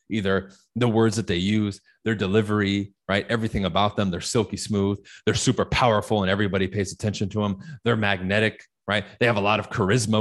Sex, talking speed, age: male, 195 wpm, 30-49